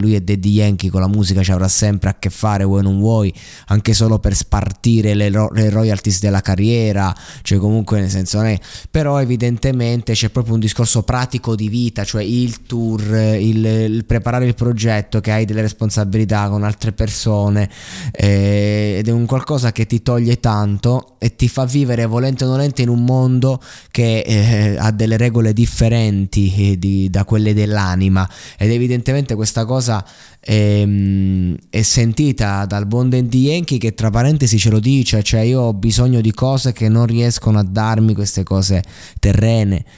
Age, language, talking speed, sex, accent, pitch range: 20-39, Italian, 165 wpm, male, native, 100-120 Hz